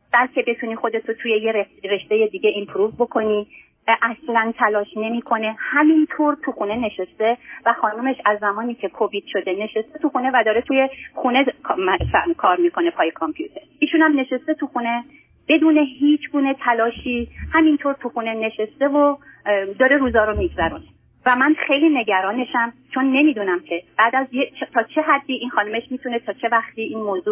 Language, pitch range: Persian, 205-265 Hz